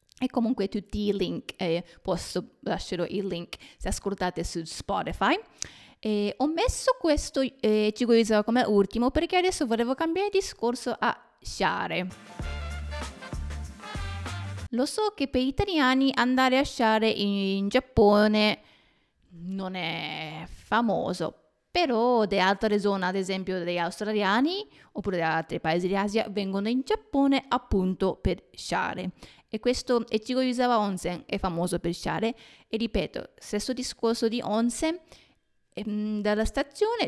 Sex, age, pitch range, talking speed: female, 20-39, 185-250 Hz, 130 wpm